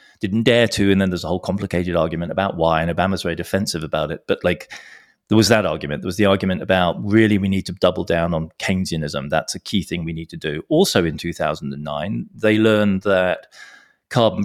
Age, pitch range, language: 30-49, 85-105 Hz, English